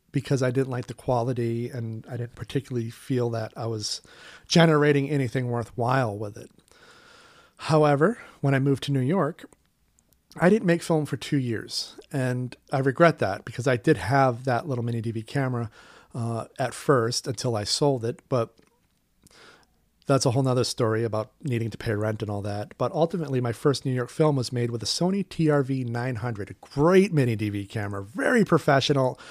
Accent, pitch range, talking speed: American, 115-145 Hz, 180 wpm